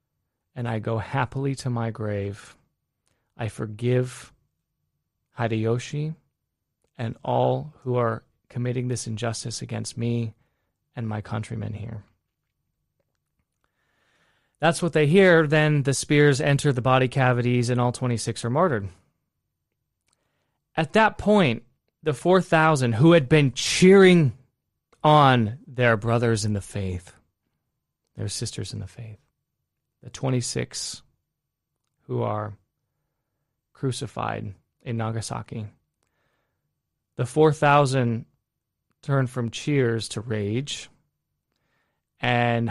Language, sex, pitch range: English, male, 115-145 Hz